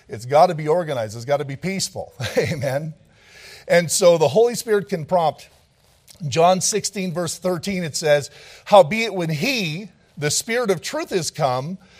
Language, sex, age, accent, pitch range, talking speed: English, male, 50-69, American, 150-200 Hz, 165 wpm